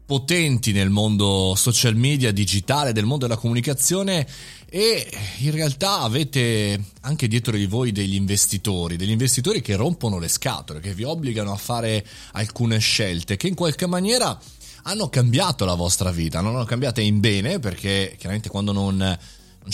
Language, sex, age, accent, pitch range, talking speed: Italian, male, 30-49, native, 95-130 Hz, 160 wpm